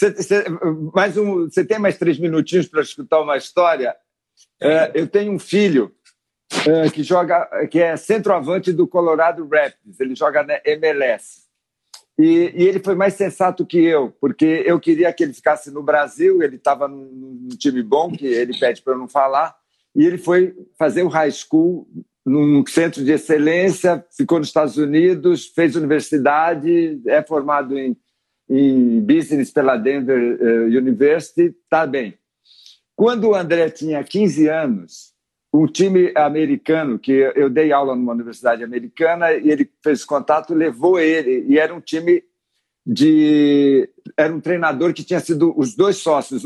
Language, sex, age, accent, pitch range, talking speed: Portuguese, male, 60-79, Brazilian, 150-200 Hz, 155 wpm